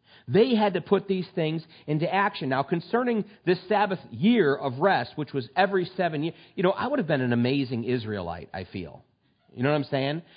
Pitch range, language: 155-210 Hz, English